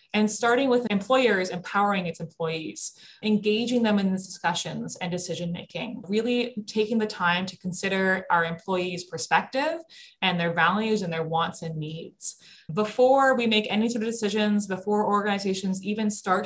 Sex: female